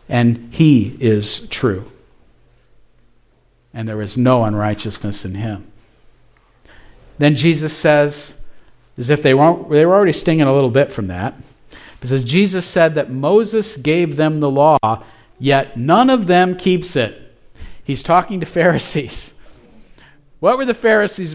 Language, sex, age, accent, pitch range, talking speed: English, male, 50-69, American, 120-190 Hz, 140 wpm